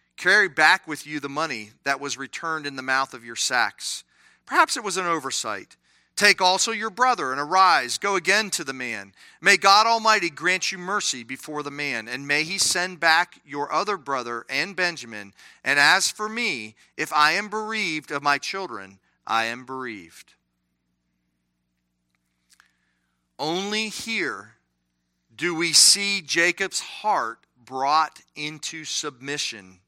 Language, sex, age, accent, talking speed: English, male, 40-59, American, 150 wpm